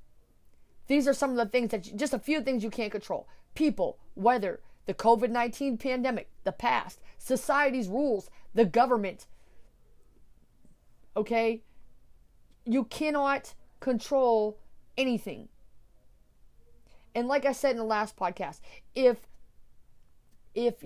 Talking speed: 115 wpm